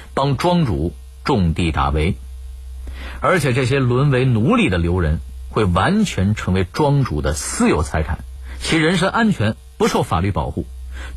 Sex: male